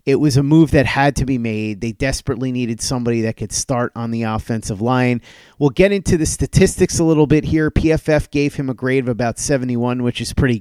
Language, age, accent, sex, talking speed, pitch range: English, 30-49, American, male, 225 wpm, 120-150 Hz